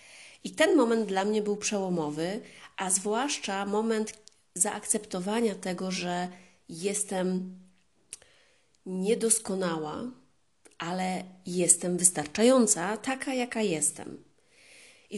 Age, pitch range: 30-49, 180-220 Hz